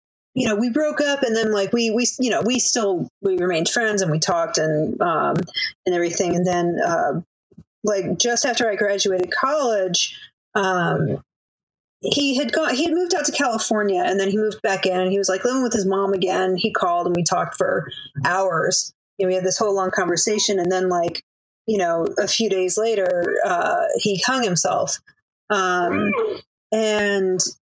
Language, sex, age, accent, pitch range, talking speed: English, female, 30-49, American, 190-275 Hz, 190 wpm